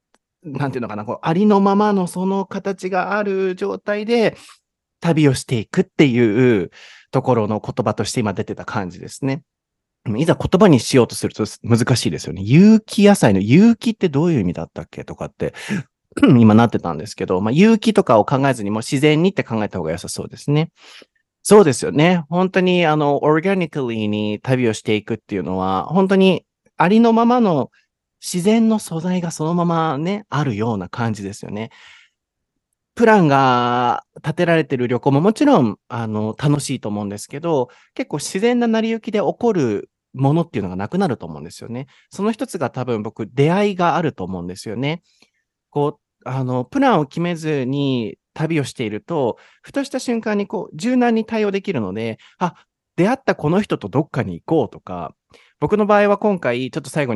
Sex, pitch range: male, 115-190 Hz